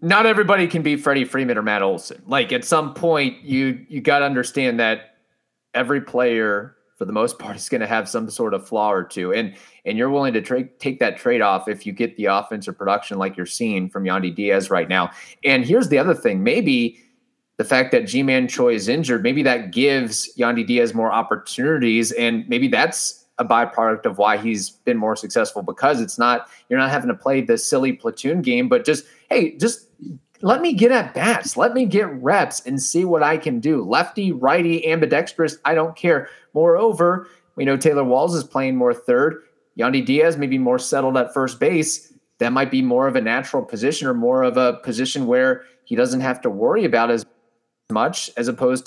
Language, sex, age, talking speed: English, male, 30-49, 210 wpm